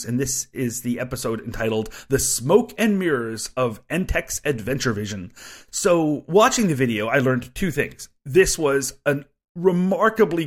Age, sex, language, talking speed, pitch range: 30-49, male, English, 150 wpm, 125-170 Hz